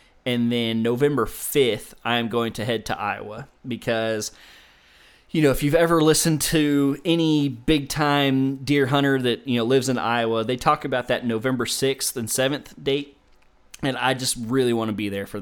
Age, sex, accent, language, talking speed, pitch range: 20-39, male, American, English, 185 wpm, 115-140 Hz